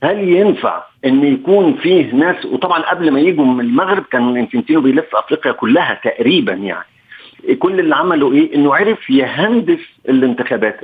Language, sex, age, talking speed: Arabic, male, 50-69, 150 wpm